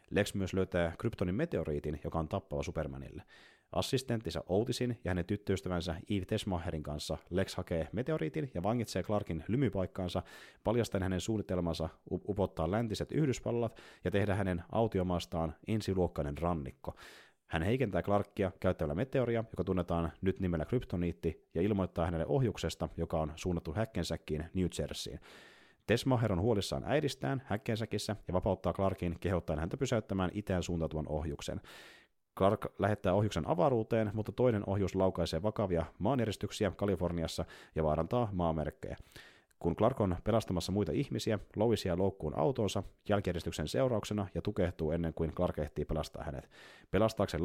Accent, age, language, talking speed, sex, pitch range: native, 30-49, Finnish, 130 wpm, male, 85-105 Hz